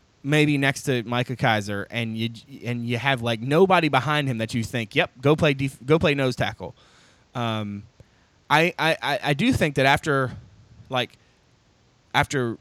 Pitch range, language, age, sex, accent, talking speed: 115-150 Hz, English, 20-39, male, American, 165 wpm